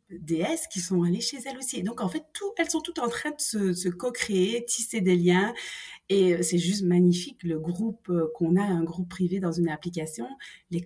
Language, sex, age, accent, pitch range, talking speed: French, female, 30-49, French, 170-215 Hz, 215 wpm